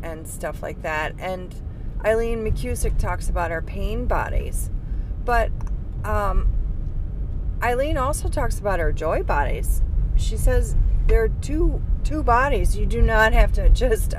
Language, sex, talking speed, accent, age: English, female, 145 wpm, American, 40-59